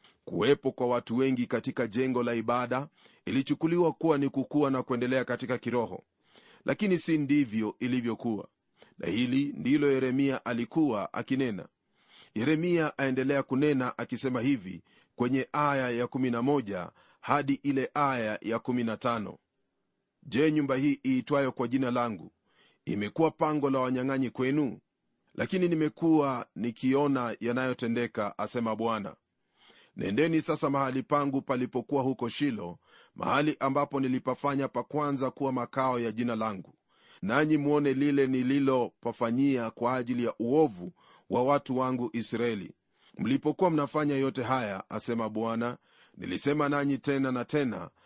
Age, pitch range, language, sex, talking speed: 40-59, 120-145 Hz, Swahili, male, 120 wpm